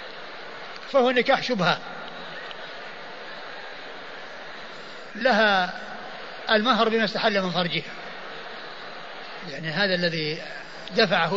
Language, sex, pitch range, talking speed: Arabic, male, 185-235 Hz, 70 wpm